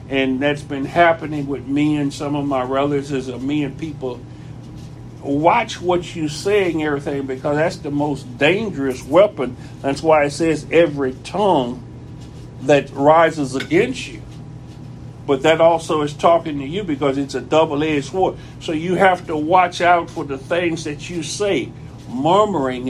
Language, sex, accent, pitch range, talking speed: English, male, American, 140-170 Hz, 160 wpm